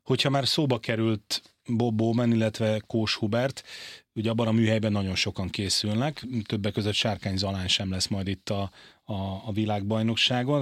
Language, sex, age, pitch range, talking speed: Hungarian, male, 30-49, 105-120 Hz, 160 wpm